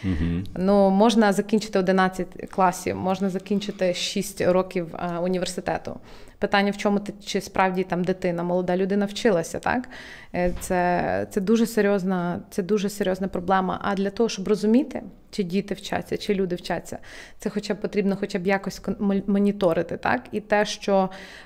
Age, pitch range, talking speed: 20-39, 185-210 Hz, 150 wpm